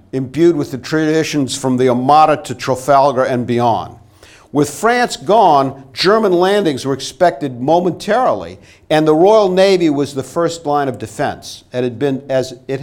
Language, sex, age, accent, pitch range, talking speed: English, male, 50-69, American, 130-175 Hz, 145 wpm